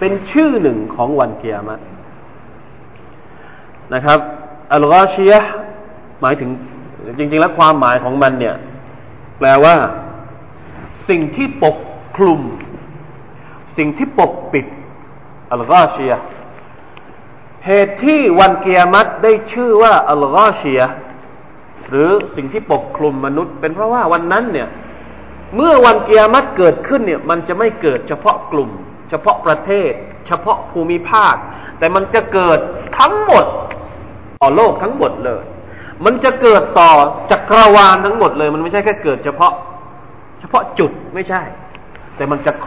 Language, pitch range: Thai, 140-210 Hz